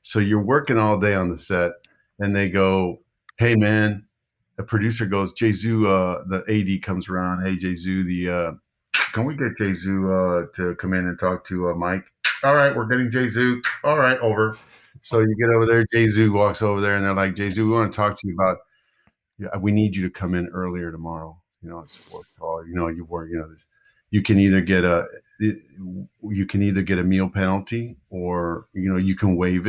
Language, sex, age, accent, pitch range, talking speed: English, male, 50-69, American, 90-110 Hz, 210 wpm